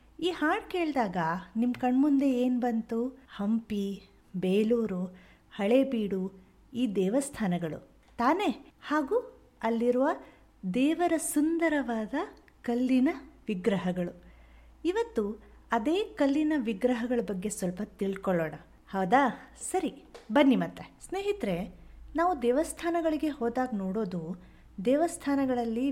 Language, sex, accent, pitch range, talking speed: Kannada, female, native, 195-280 Hz, 85 wpm